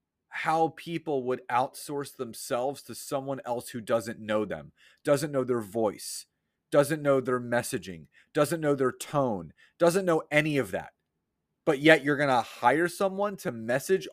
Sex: male